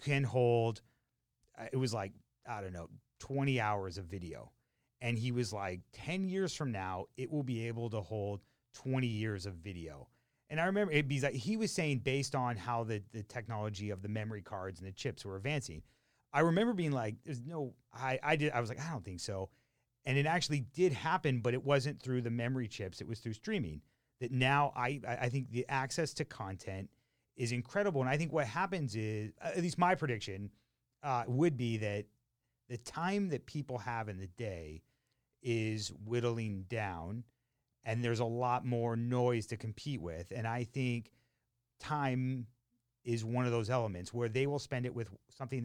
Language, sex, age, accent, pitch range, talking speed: English, male, 30-49, American, 110-135 Hz, 195 wpm